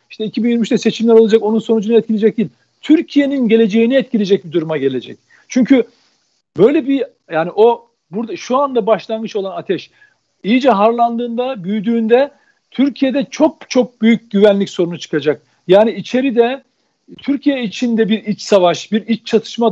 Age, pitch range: 50-69, 205-250 Hz